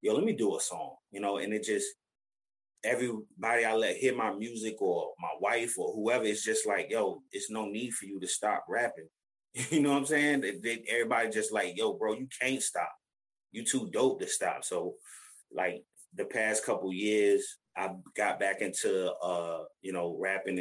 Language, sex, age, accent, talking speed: English, male, 20-39, American, 190 wpm